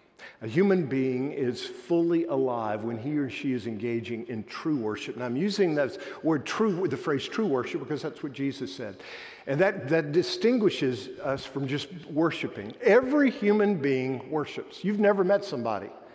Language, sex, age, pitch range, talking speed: English, male, 50-69, 135-190 Hz, 175 wpm